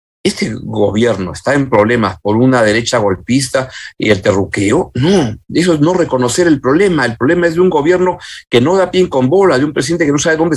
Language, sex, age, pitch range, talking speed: Spanish, male, 50-69, 120-160 Hz, 215 wpm